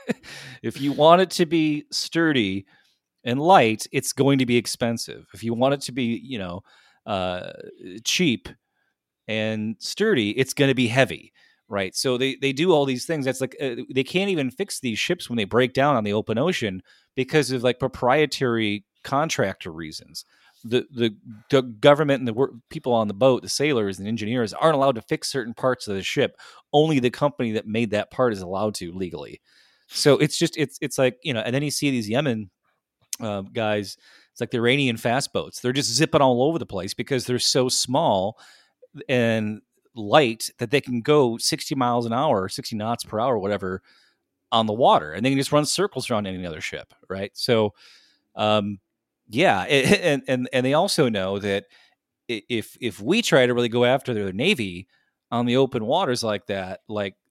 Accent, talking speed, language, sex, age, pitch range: American, 195 wpm, English, male, 30-49, 110-140 Hz